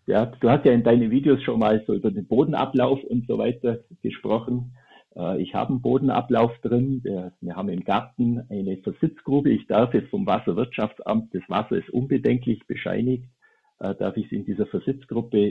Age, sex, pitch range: 50-69, male, 110-135 Hz